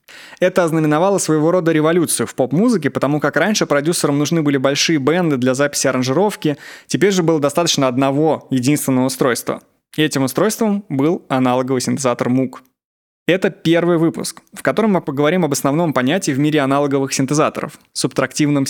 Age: 20-39